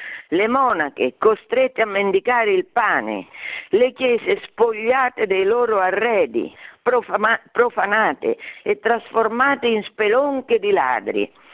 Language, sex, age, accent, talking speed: Italian, female, 50-69, native, 105 wpm